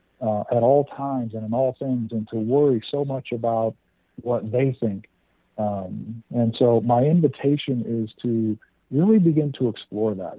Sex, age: male, 50-69